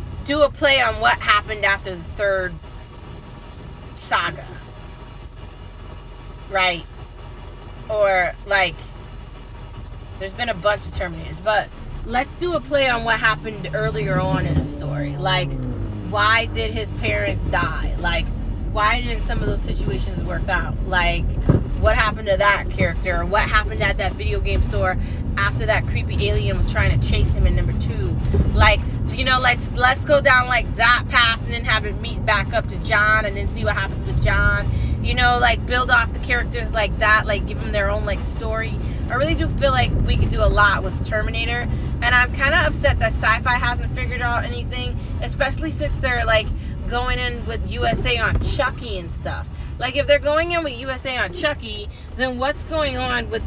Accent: American